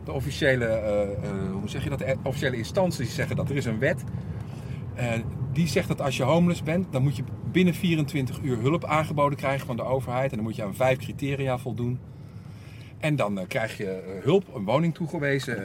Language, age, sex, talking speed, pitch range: Dutch, 50-69, male, 180 wpm, 110-145 Hz